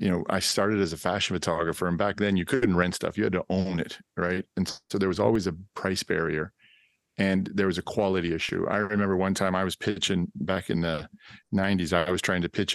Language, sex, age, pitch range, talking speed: English, male, 50-69, 90-100 Hz, 240 wpm